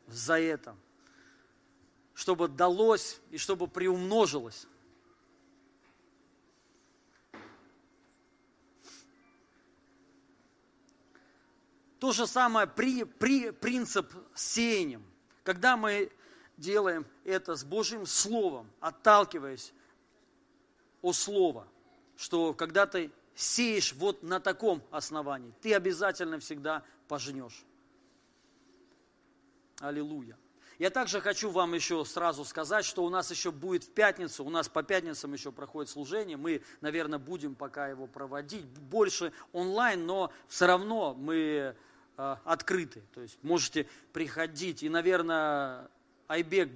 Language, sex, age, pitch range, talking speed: Russian, male, 40-59, 150-220 Hz, 105 wpm